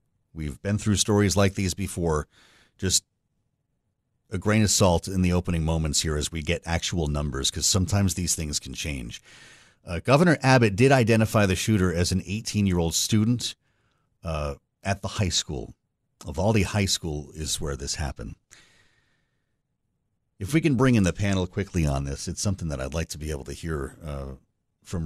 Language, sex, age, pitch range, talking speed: English, male, 40-59, 85-110 Hz, 175 wpm